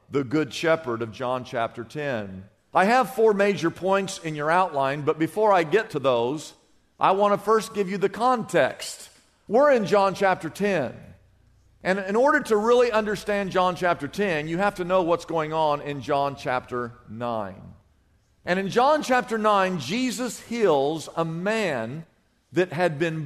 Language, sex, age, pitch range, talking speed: English, male, 50-69, 145-220 Hz, 170 wpm